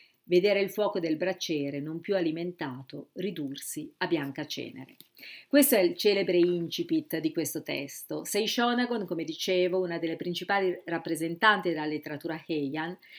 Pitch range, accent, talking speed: 160-215 Hz, native, 140 wpm